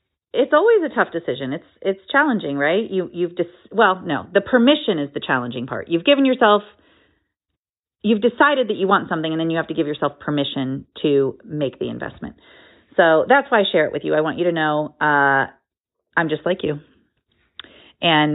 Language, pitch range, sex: English, 160-210 Hz, female